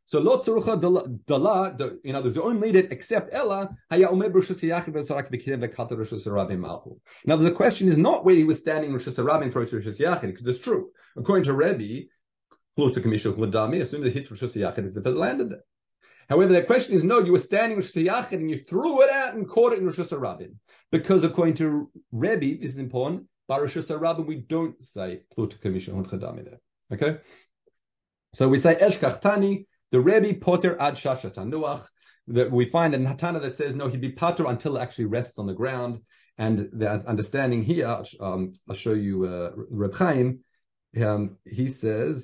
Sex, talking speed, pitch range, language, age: male, 175 wpm, 115-170 Hz, English, 30-49